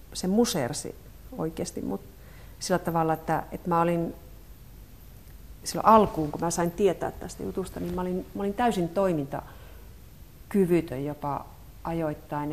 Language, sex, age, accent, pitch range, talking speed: Finnish, female, 40-59, native, 160-195 Hz, 130 wpm